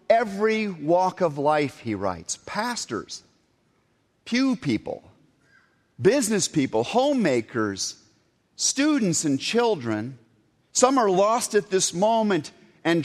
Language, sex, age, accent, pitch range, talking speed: English, male, 50-69, American, 135-195 Hz, 100 wpm